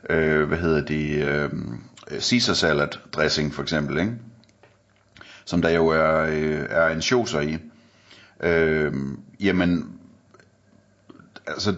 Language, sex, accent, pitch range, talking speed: Danish, male, native, 80-100 Hz, 105 wpm